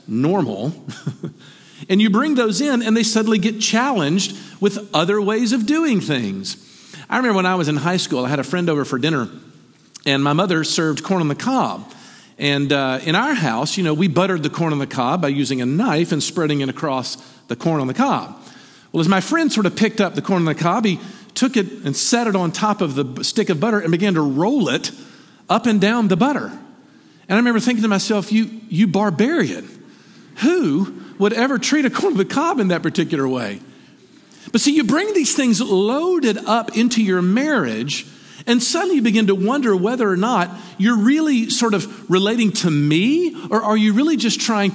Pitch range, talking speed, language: 170-240 Hz, 210 wpm, English